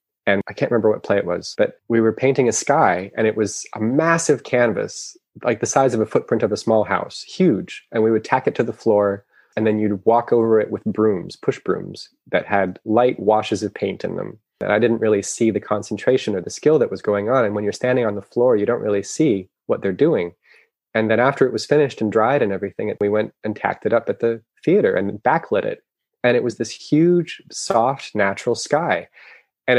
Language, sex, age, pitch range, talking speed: English, male, 20-39, 105-145 Hz, 235 wpm